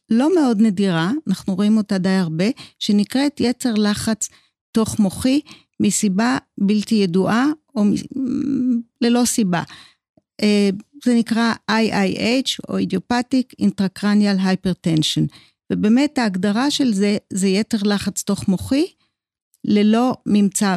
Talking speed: 110 wpm